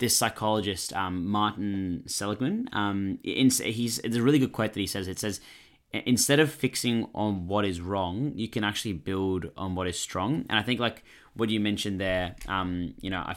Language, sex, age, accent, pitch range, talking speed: English, male, 20-39, Australian, 90-110 Hz, 200 wpm